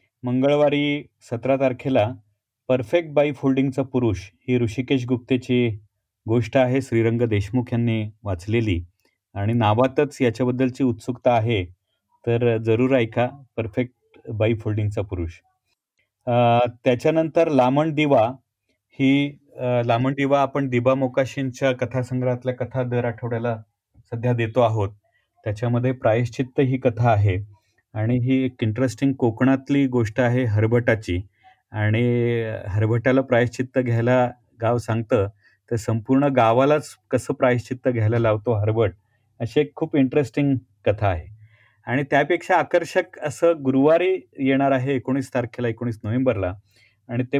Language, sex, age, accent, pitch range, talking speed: Marathi, male, 30-49, native, 115-135 Hz, 115 wpm